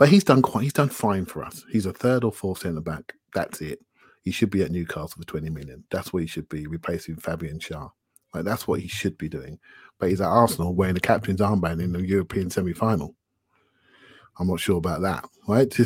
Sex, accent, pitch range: male, British, 90-115 Hz